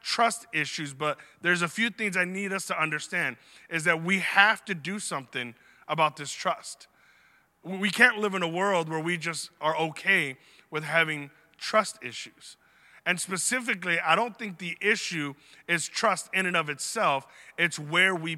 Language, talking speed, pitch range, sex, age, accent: English, 175 wpm, 160-205 Hz, male, 30-49, American